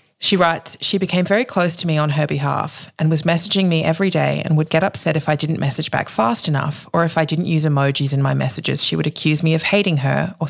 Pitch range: 150-175 Hz